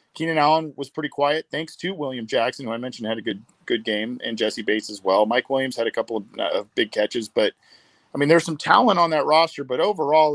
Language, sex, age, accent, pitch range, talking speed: English, male, 40-59, American, 115-145 Hz, 245 wpm